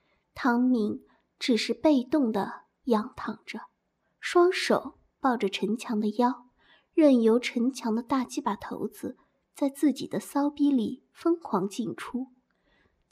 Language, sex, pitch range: Chinese, female, 225-285 Hz